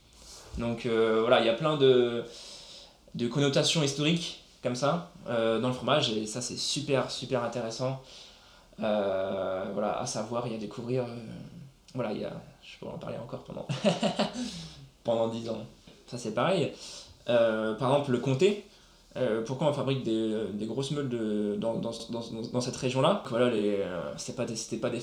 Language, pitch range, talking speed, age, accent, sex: French, 115-140 Hz, 175 wpm, 20-39, French, male